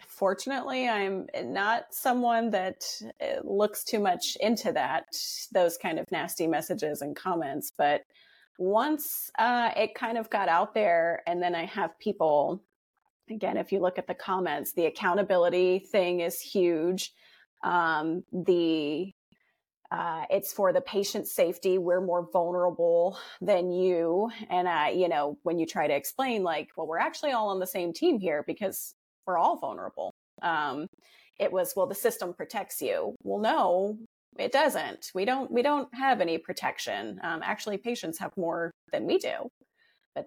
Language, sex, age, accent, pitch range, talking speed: English, female, 30-49, American, 175-220 Hz, 160 wpm